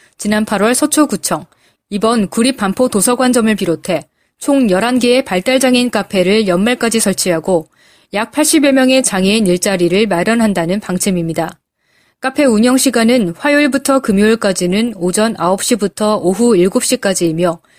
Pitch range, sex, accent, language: 185-250 Hz, female, native, Korean